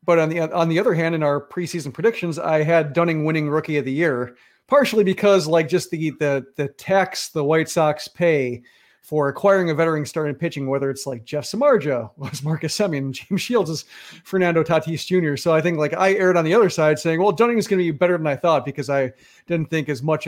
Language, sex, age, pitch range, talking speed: English, male, 40-59, 145-180 Hz, 230 wpm